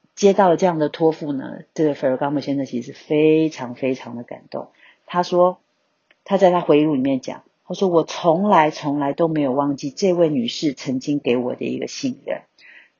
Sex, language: female, Chinese